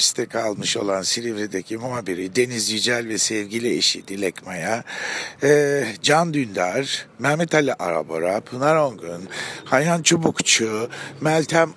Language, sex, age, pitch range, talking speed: German, male, 60-79, 125-165 Hz, 110 wpm